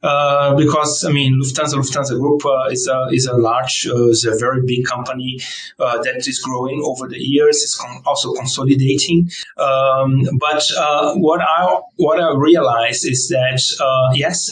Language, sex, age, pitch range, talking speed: English, male, 30-49, 130-155 Hz, 175 wpm